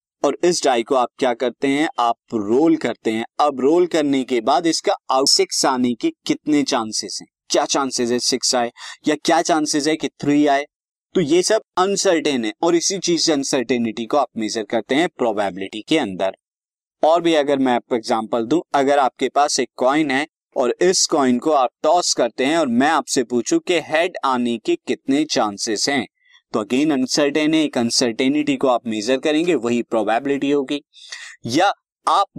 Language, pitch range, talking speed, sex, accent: Hindi, 120-160 Hz, 185 wpm, male, native